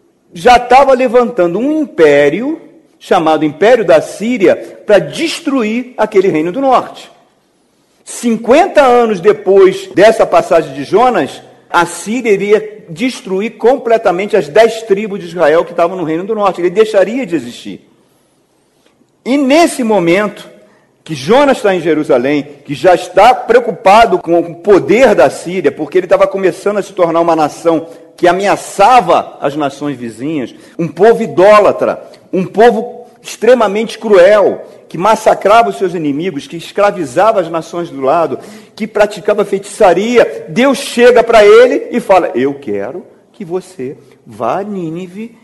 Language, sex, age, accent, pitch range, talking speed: Portuguese, male, 50-69, Brazilian, 170-245 Hz, 140 wpm